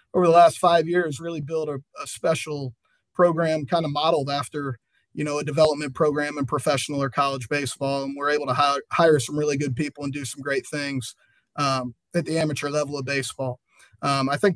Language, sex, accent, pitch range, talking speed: English, male, American, 145-170 Hz, 205 wpm